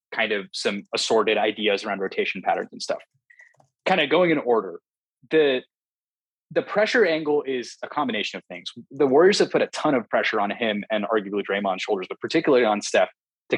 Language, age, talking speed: English, 20-39, 190 wpm